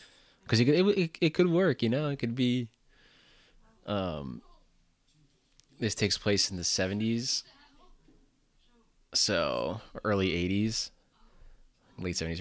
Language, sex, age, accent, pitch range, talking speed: English, male, 20-39, American, 85-105 Hz, 115 wpm